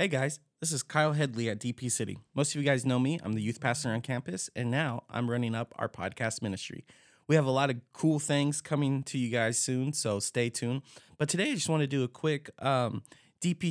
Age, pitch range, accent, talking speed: 20-39, 115-145 Hz, American, 240 wpm